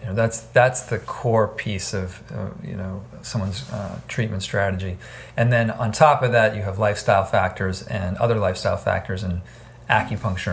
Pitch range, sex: 100-120 Hz, male